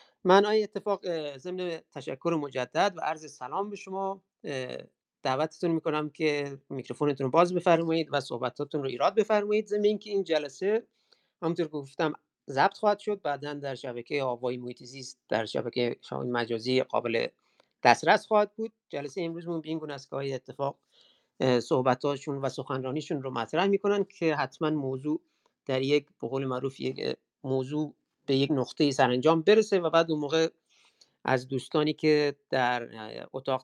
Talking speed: 150 wpm